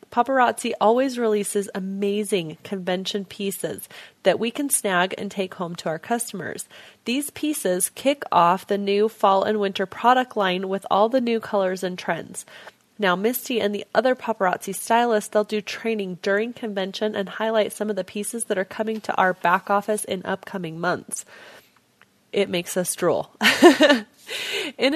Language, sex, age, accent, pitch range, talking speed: English, female, 30-49, American, 195-230 Hz, 160 wpm